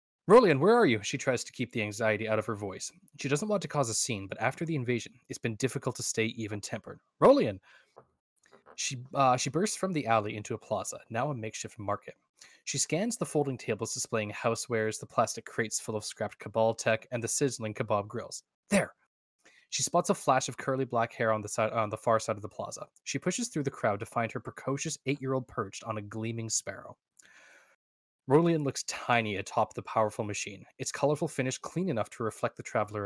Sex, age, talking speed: male, 10-29, 210 wpm